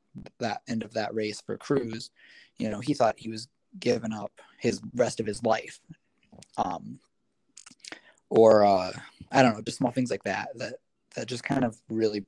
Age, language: 20-39, English